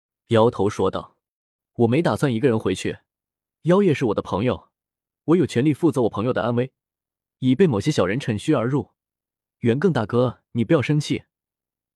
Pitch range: 100-150 Hz